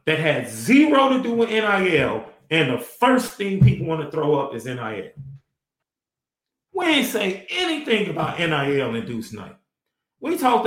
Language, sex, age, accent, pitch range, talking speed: English, male, 40-59, American, 150-210 Hz, 165 wpm